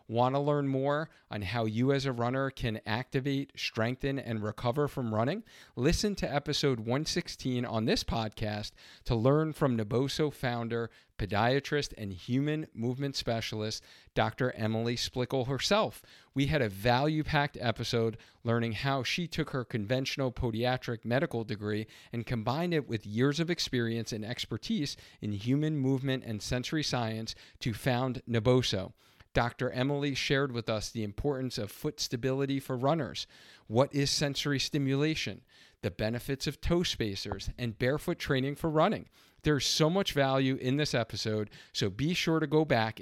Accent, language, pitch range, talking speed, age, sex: American, English, 110-140 Hz, 150 wpm, 50-69, male